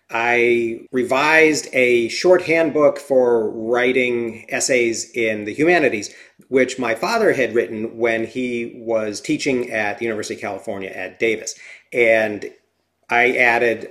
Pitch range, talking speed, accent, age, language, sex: 115-140 Hz, 130 wpm, American, 40-59, English, male